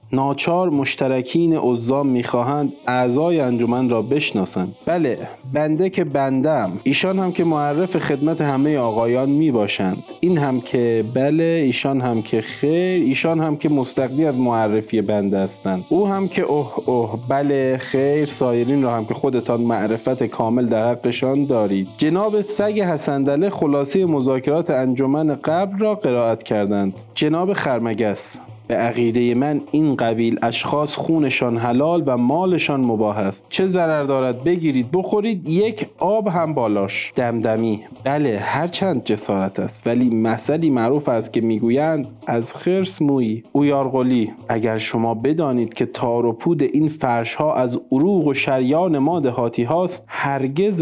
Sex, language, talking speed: male, Persian, 140 wpm